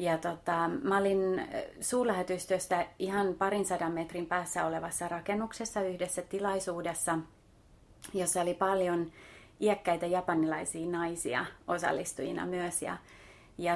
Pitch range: 165-185 Hz